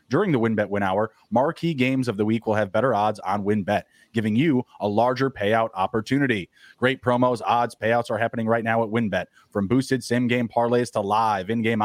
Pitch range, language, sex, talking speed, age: 110-135 Hz, English, male, 205 wpm, 30-49